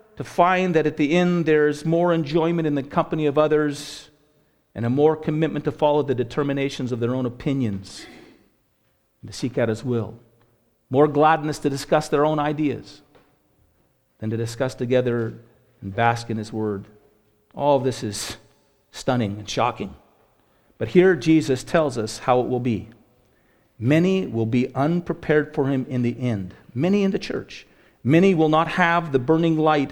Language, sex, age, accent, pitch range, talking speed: English, male, 50-69, American, 125-170 Hz, 170 wpm